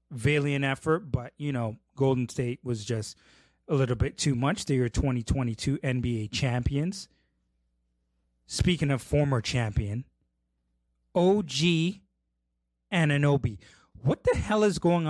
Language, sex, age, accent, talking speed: English, male, 30-49, American, 120 wpm